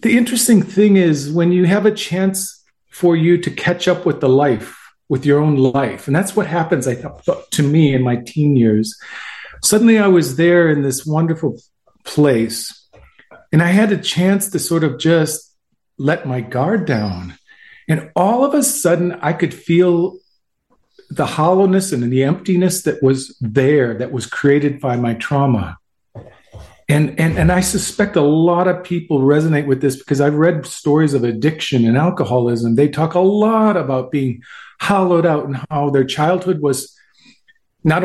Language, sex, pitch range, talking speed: English, male, 135-180 Hz, 170 wpm